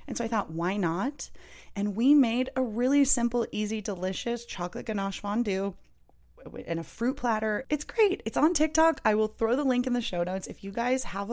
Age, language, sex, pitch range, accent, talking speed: 20-39, English, female, 175-245 Hz, American, 205 wpm